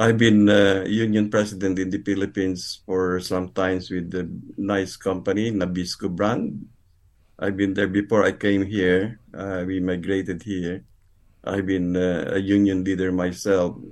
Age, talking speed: 50-69, 150 wpm